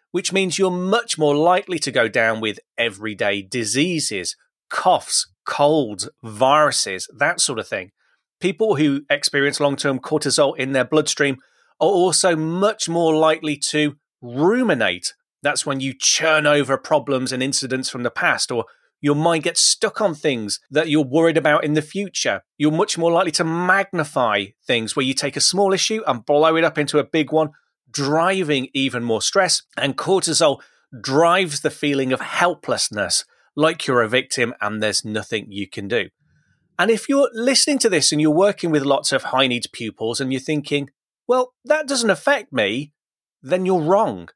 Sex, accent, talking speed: male, British, 170 wpm